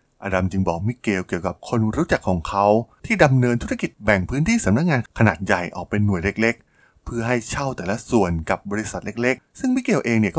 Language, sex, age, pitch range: Thai, male, 20-39, 95-120 Hz